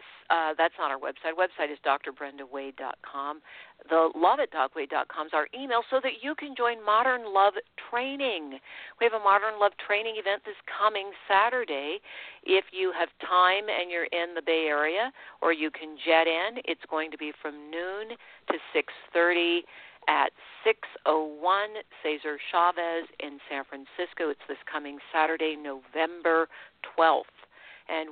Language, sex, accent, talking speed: English, female, American, 150 wpm